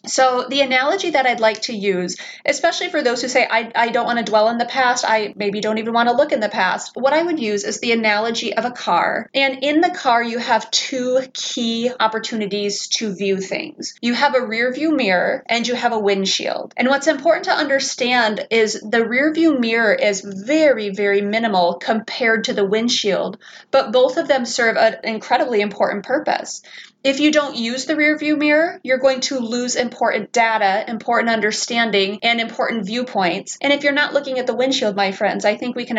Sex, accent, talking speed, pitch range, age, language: female, American, 210 wpm, 215-270 Hz, 20-39, English